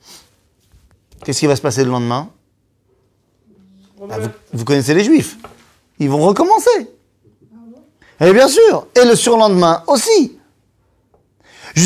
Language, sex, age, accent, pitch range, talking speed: French, male, 30-49, French, 120-200 Hz, 120 wpm